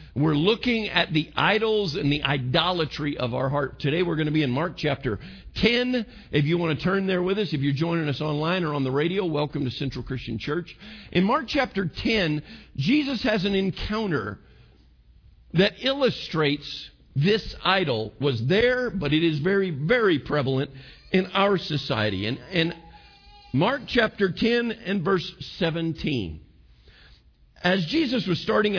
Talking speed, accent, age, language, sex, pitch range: 160 wpm, American, 50-69, English, male, 130-195 Hz